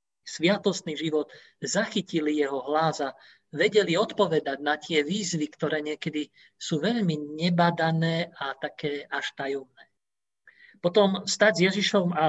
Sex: male